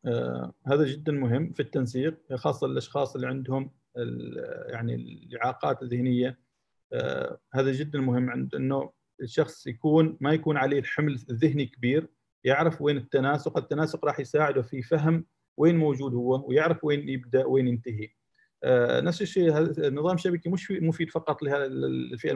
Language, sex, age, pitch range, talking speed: Arabic, male, 40-59, 130-160 Hz, 150 wpm